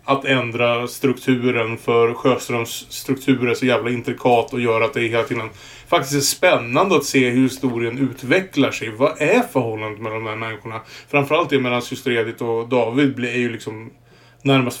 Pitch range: 115-135 Hz